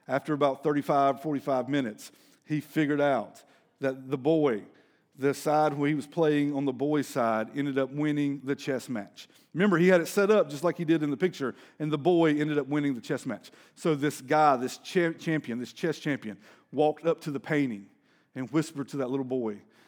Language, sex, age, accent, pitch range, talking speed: English, male, 40-59, American, 130-155 Hz, 205 wpm